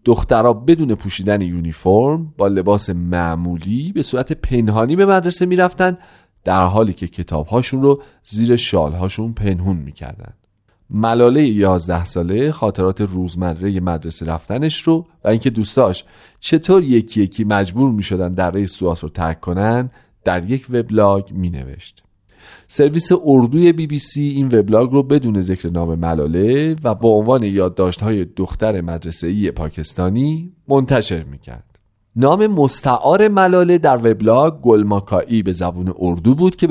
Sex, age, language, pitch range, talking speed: male, 40-59, Persian, 95-145 Hz, 135 wpm